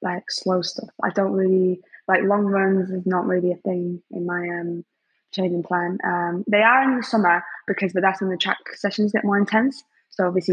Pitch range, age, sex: 175-195 Hz, 20-39, female